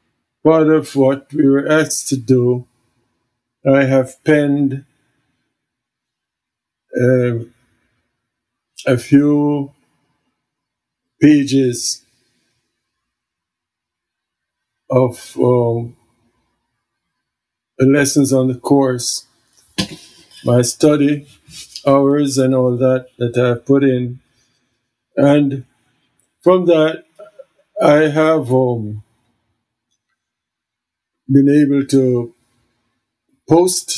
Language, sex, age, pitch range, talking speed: English, male, 50-69, 120-140 Hz, 75 wpm